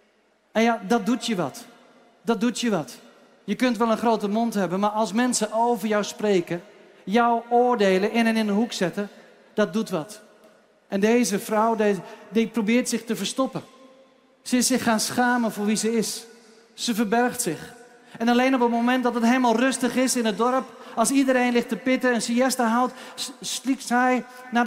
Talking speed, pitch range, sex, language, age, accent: 190 wpm, 190-240 Hz, male, Dutch, 40-59, Dutch